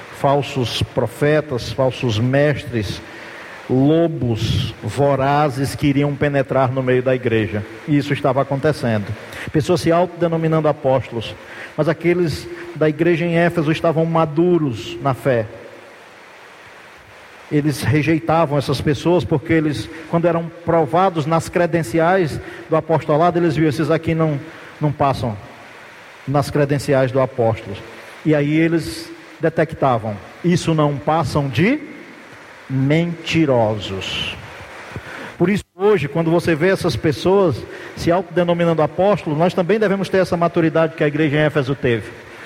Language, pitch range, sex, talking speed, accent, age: Portuguese, 140-175 Hz, male, 125 wpm, Brazilian, 50-69